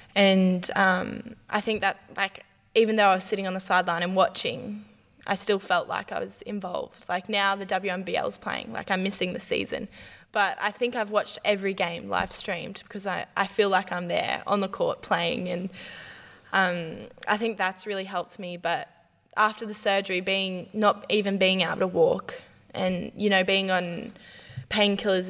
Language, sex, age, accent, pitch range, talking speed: English, female, 10-29, Australian, 185-205 Hz, 185 wpm